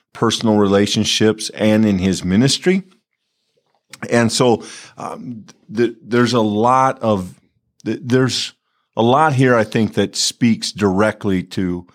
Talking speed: 125 wpm